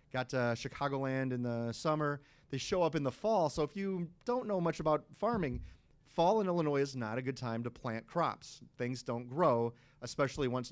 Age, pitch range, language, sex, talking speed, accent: 30-49, 120-140 Hz, English, male, 200 wpm, American